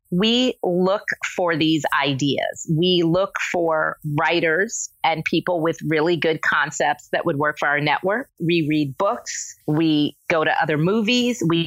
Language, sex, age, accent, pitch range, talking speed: English, female, 30-49, American, 160-200 Hz, 155 wpm